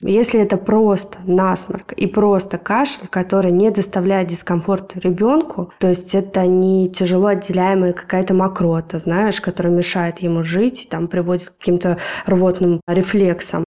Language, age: Russian, 20-39